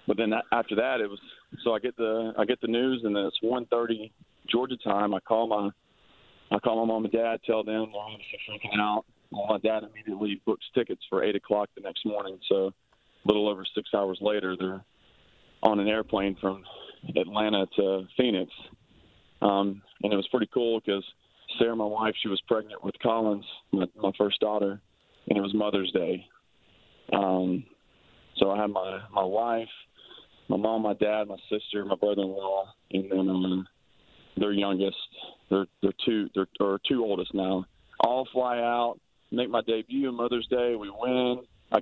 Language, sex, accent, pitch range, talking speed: English, male, American, 100-115 Hz, 190 wpm